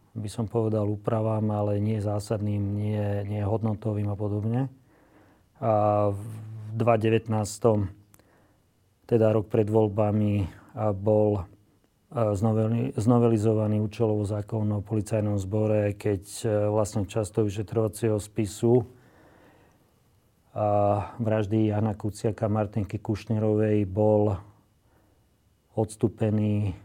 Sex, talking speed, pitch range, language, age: male, 85 wpm, 105-110 Hz, Slovak, 40-59